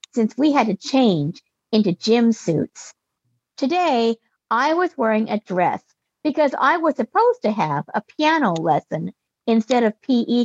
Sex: female